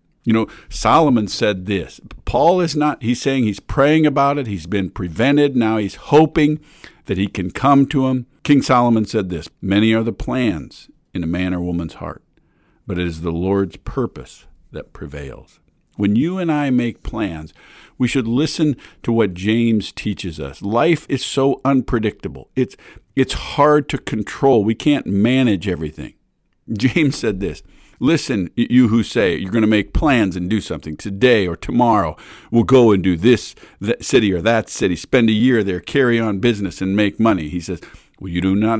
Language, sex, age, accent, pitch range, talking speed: English, male, 50-69, American, 95-130 Hz, 185 wpm